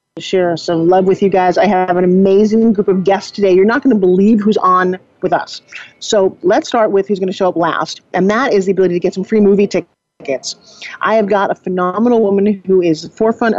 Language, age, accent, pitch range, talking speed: English, 40-59, American, 185-215 Hz, 235 wpm